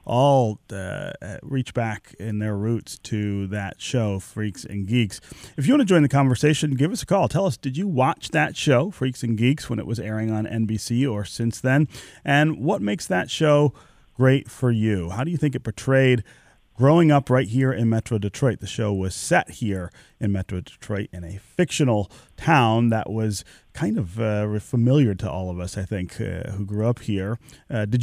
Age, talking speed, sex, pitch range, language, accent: 30-49, 205 wpm, male, 105-130 Hz, English, American